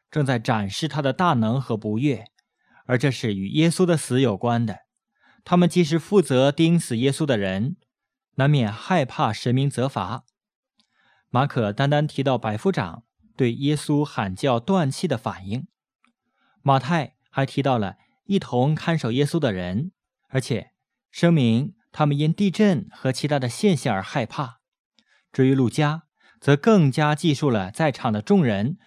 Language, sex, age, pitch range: English, male, 20-39, 120-165 Hz